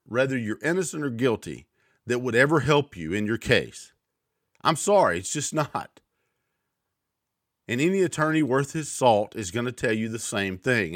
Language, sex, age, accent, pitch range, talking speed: English, male, 50-69, American, 110-150 Hz, 175 wpm